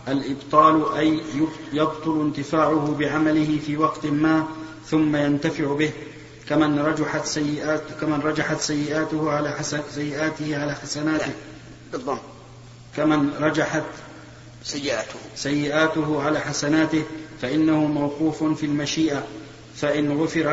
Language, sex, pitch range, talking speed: Arabic, male, 150-155 Hz, 100 wpm